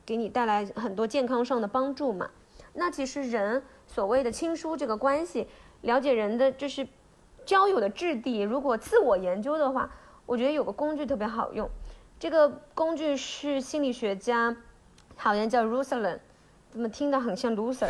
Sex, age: female, 20-39